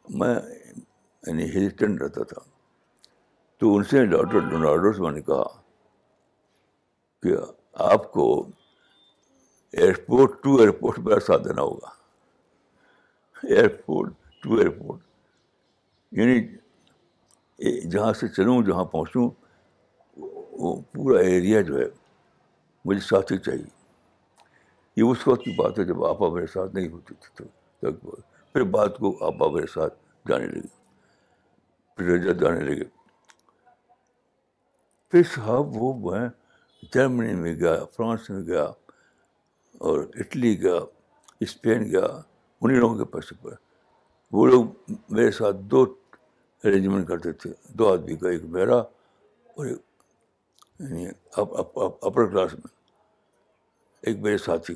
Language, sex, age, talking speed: Urdu, male, 60-79, 95 wpm